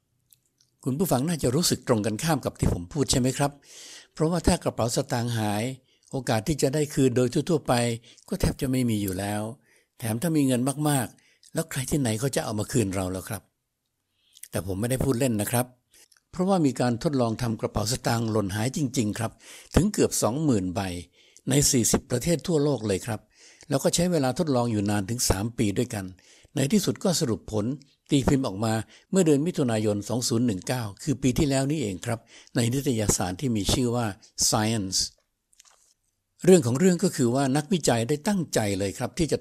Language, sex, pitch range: Thai, male, 110-140 Hz